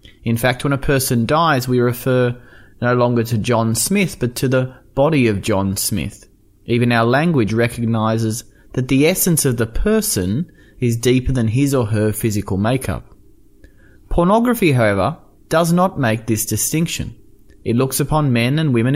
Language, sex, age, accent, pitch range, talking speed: English, male, 30-49, Australian, 105-140 Hz, 160 wpm